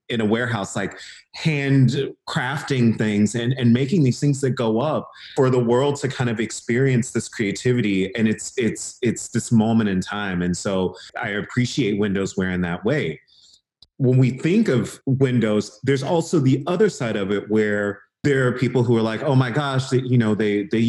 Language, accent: English, American